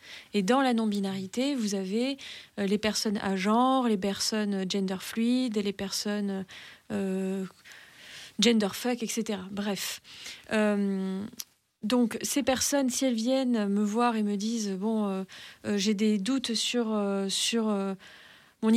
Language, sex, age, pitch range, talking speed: French, female, 30-49, 205-235 Hz, 145 wpm